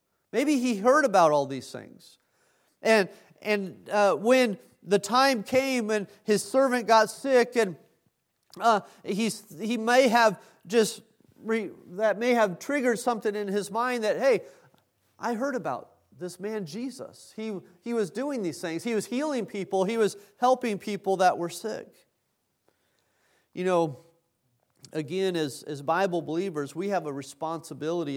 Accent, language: American, English